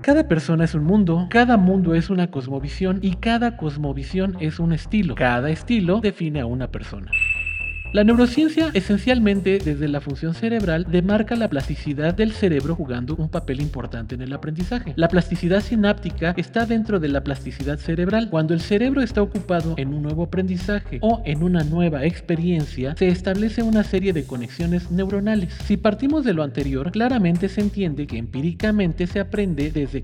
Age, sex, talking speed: 40-59, male, 170 wpm